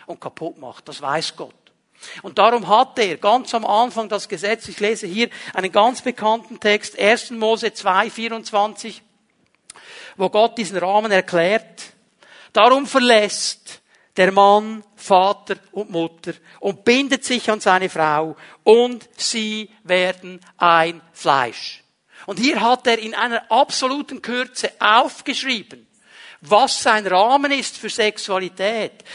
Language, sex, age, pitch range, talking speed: German, male, 60-79, 205-250 Hz, 130 wpm